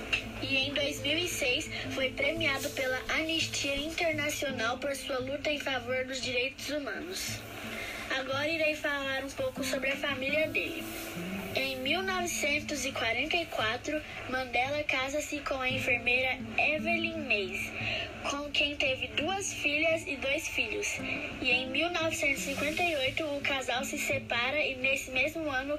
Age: 10-29